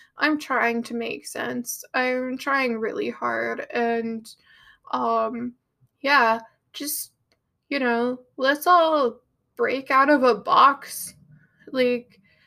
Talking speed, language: 110 wpm, English